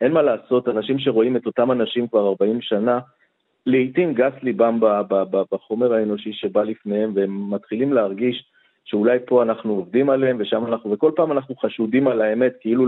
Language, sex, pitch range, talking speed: English, male, 115-155 Hz, 170 wpm